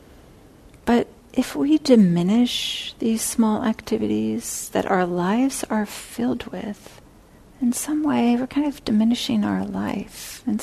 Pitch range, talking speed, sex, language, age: 175-240 Hz, 125 wpm, female, English, 40-59